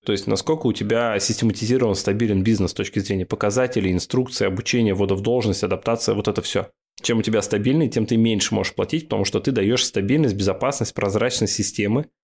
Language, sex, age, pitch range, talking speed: Russian, male, 20-39, 100-115 Hz, 185 wpm